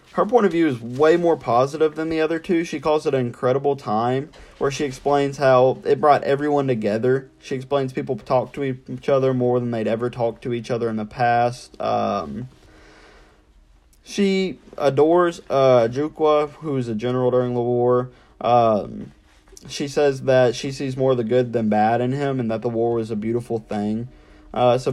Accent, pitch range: American, 115-140 Hz